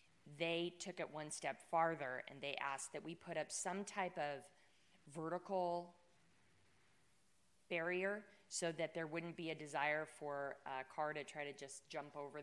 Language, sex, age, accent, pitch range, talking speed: English, female, 20-39, American, 140-165 Hz, 165 wpm